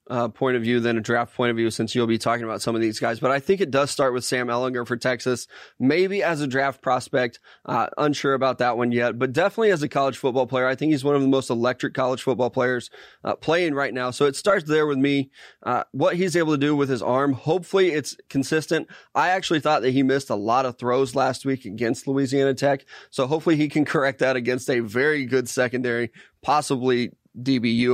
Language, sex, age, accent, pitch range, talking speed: English, male, 20-39, American, 125-150 Hz, 235 wpm